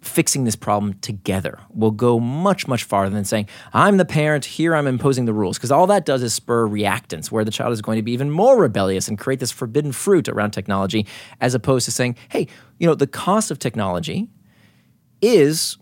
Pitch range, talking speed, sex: 105-155 Hz, 210 wpm, male